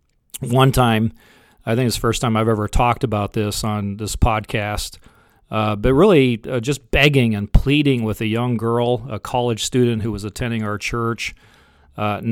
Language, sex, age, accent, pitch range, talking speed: English, male, 40-59, American, 105-120 Hz, 180 wpm